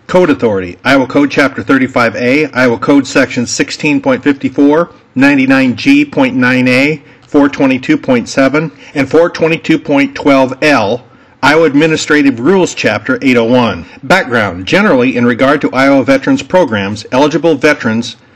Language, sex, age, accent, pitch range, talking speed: English, male, 50-69, American, 130-170 Hz, 95 wpm